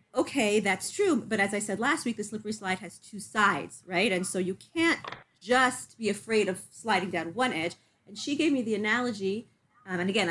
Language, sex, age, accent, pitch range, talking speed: English, female, 30-49, American, 185-260 Hz, 215 wpm